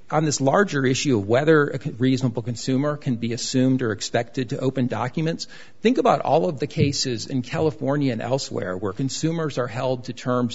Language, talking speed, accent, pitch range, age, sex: English, 190 wpm, American, 120-145 Hz, 50-69, male